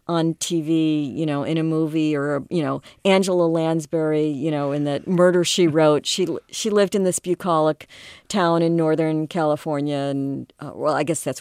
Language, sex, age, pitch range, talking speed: English, female, 50-69, 165-205 Hz, 185 wpm